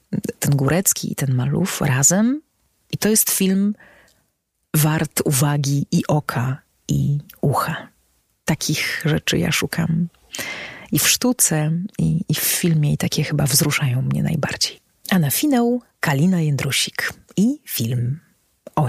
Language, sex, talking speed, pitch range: Polish, female, 130 wpm, 140-170 Hz